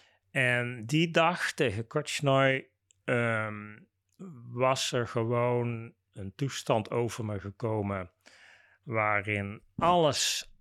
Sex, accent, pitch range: male, Dutch, 105-135 Hz